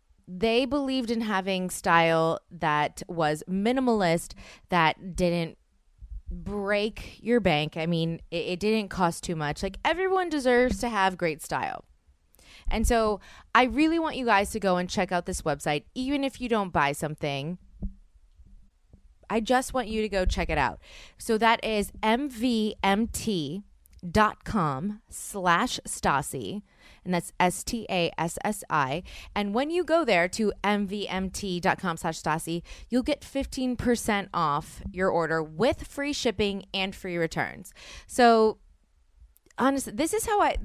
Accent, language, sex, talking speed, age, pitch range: American, English, female, 145 wpm, 20-39, 160-230 Hz